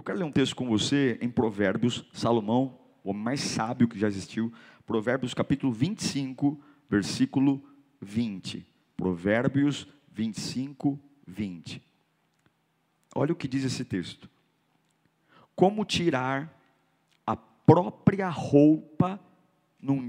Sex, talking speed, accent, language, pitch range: male, 110 wpm, Brazilian, Portuguese, 120-170 Hz